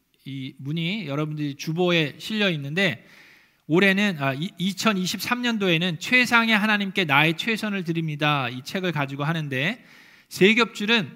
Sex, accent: male, native